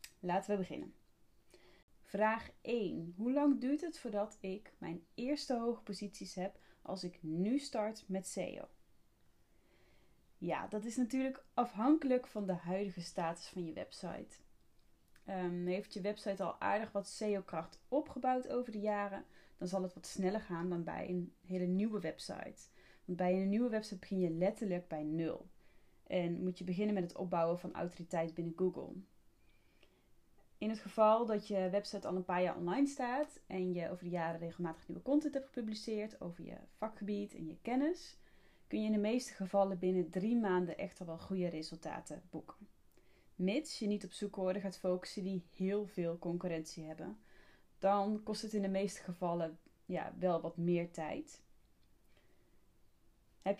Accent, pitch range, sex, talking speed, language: Dutch, 180-220 Hz, female, 160 wpm, Dutch